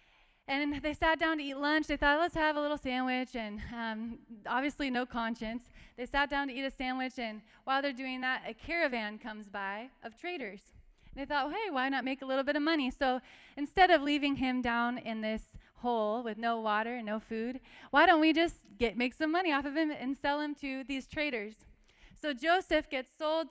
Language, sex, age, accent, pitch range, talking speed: English, female, 20-39, American, 225-290 Hz, 220 wpm